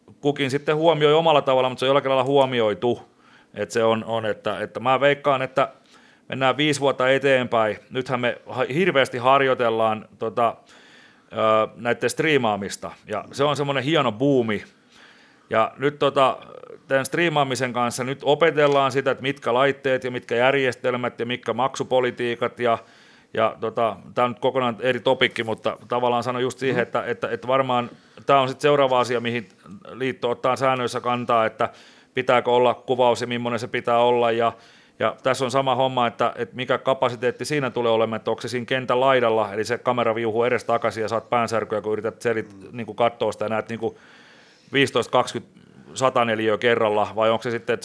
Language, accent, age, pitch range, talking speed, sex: Finnish, native, 40-59, 115-135 Hz, 165 wpm, male